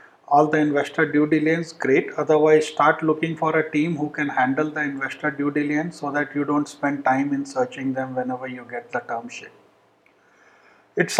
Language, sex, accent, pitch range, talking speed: English, male, Indian, 140-170 Hz, 190 wpm